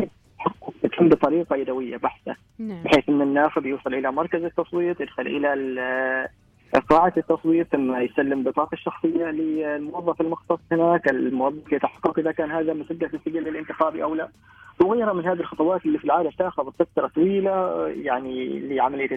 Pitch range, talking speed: 140-175 Hz, 140 wpm